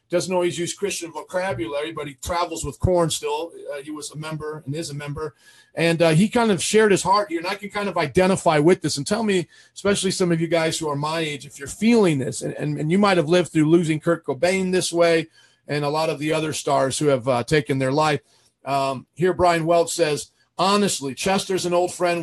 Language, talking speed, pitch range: English, 240 wpm, 155-190 Hz